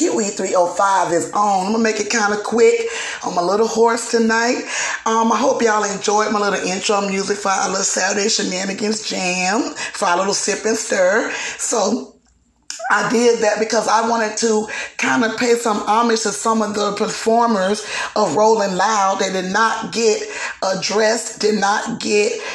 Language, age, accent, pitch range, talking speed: English, 30-49, American, 200-230 Hz, 175 wpm